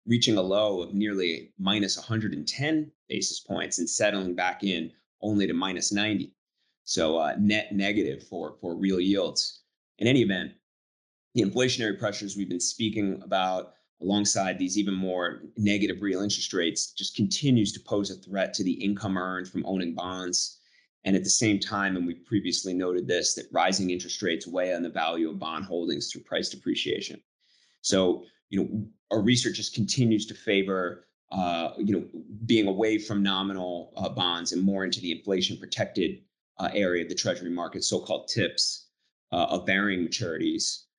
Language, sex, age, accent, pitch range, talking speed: English, male, 30-49, American, 90-105 Hz, 170 wpm